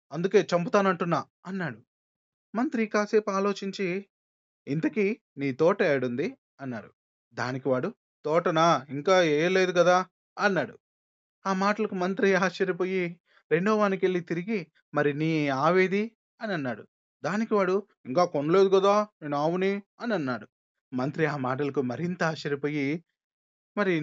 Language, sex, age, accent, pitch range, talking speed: Telugu, male, 20-39, native, 160-200 Hz, 105 wpm